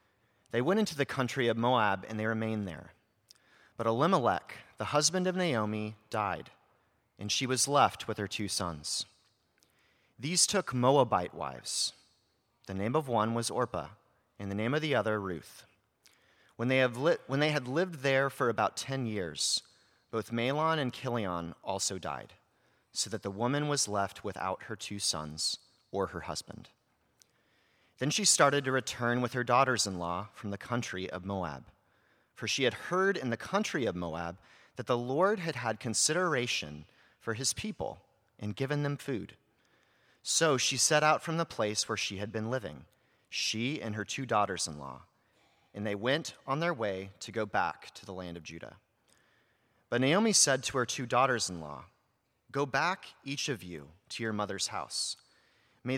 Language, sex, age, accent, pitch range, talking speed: English, male, 30-49, American, 100-135 Hz, 165 wpm